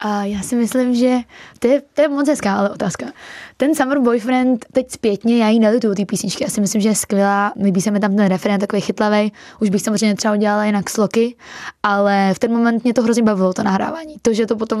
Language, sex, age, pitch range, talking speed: Czech, female, 20-39, 200-225 Hz, 235 wpm